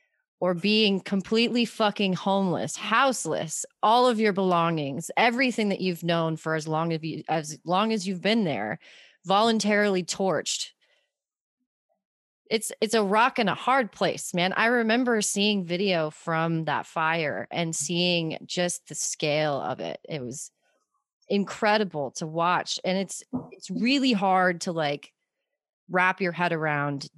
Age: 30-49